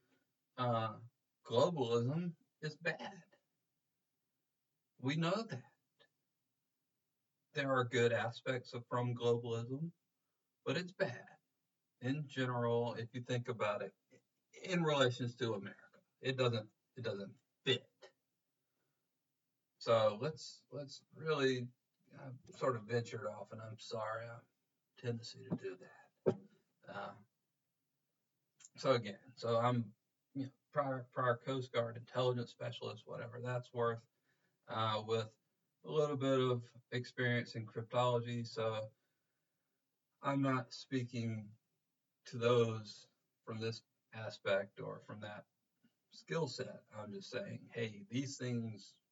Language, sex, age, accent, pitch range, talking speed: English, male, 50-69, American, 115-140 Hz, 115 wpm